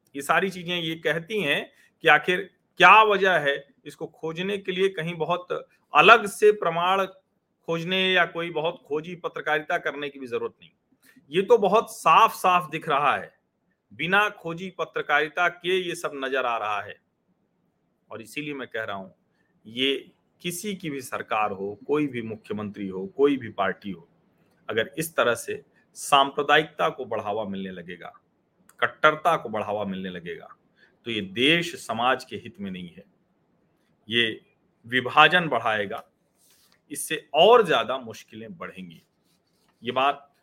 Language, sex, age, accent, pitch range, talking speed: Hindi, male, 40-59, native, 130-190 Hz, 130 wpm